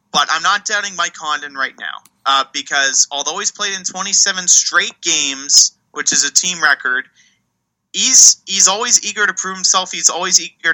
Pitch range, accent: 145-190 Hz, American